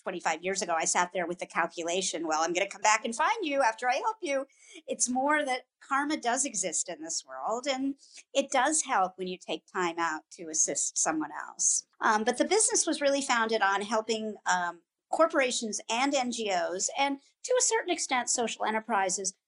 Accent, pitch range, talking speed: American, 190-280 Hz, 195 wpm